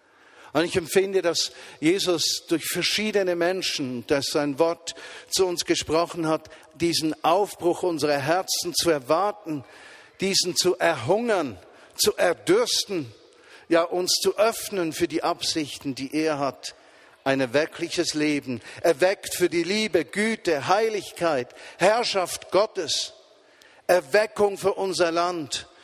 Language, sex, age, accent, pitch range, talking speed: German, male, 50-69, German, 155-190 Hz, 120 wpm